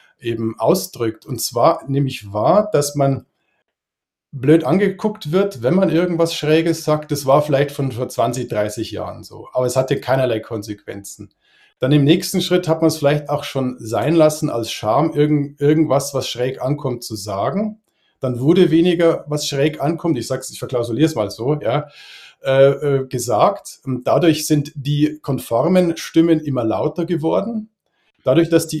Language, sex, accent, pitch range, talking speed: German, male, German, 125-160 Hz, 160 wpm